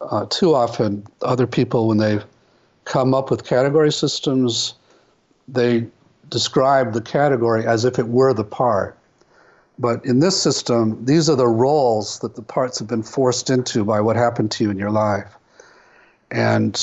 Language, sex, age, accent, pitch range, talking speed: English, male, 50-69, American, 110-135 Hz, 165 wpm